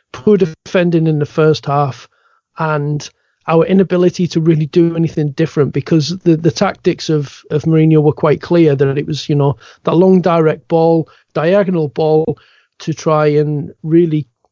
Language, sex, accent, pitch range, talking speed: English, male, British, 150-175 Hz, 160 wpm